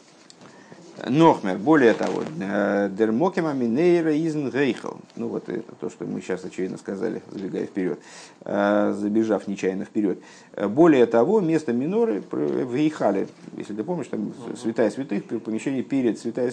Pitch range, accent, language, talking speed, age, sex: 105-155 Hz, native, Russian, 125 wpm, 50-69, male